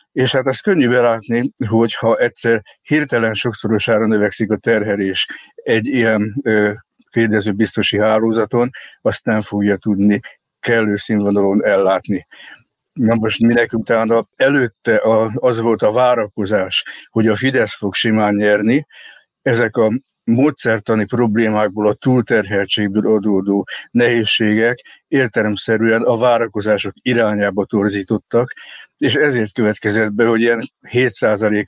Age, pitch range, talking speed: 60-79, 105-115 Hz, 110 wpm